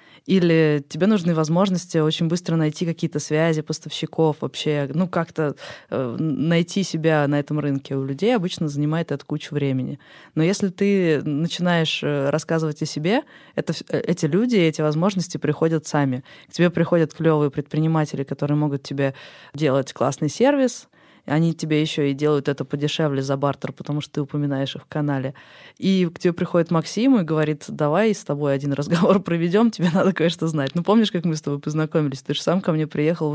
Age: 20-39